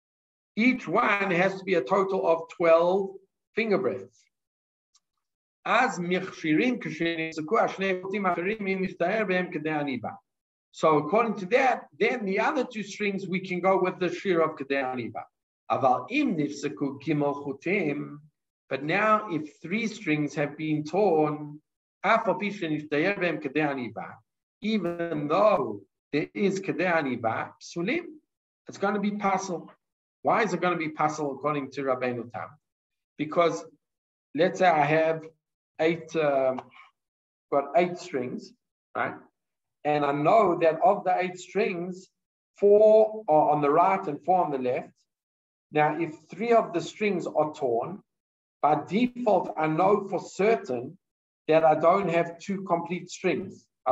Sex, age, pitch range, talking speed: male, 50-69, 150-190 Hz, 120 wpm